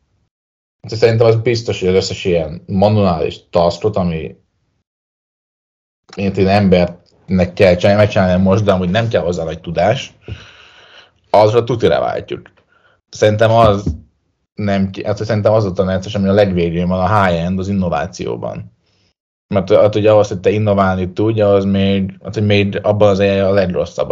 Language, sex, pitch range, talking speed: Hungarian, male, 90-105 Hz, 150 wpm